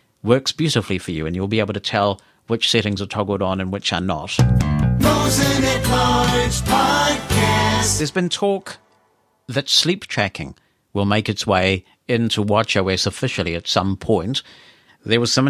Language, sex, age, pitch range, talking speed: English, male, 50-69, 95-125 Hz, 145 wpm